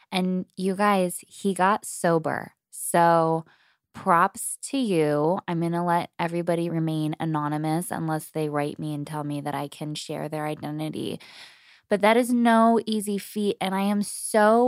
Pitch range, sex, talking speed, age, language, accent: 155-200 Hz, female, 165 wpm, 20-39, English, American